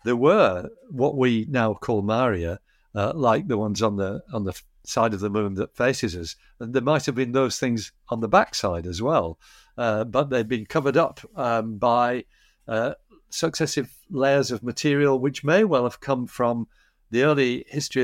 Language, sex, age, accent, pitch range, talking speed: English, male, 60-79, British, 110-140 Hz, 185 wpm